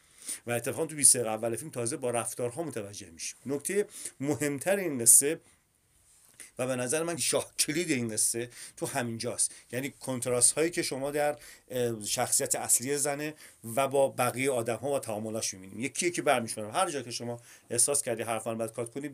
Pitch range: 120-160 Hz